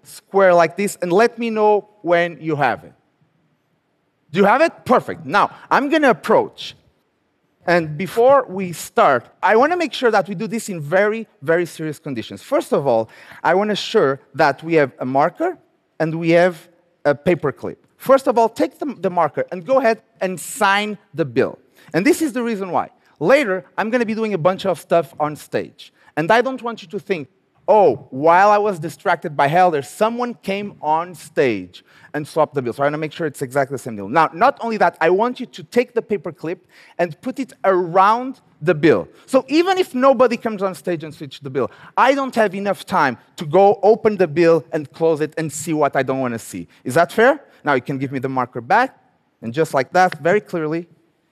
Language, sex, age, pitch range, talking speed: Arabic, male, 30-49, 155-220 Hz, 220 wpm